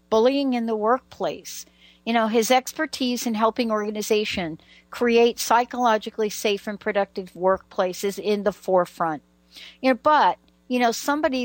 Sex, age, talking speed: female, 60-79, 135 wpm